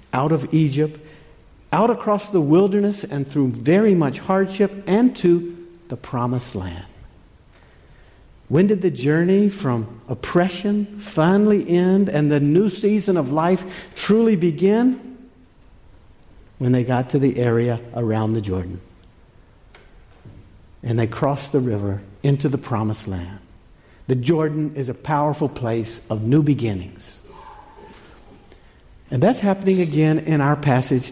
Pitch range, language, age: 115-190 Hz, English, 60-79